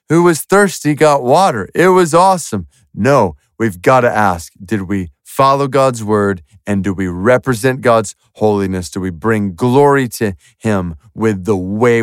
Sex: male